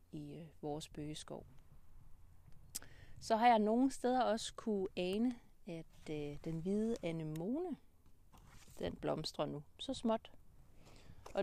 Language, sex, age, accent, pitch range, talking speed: Danish, female, 30-49, native, 165-210 Hz, 120 wpm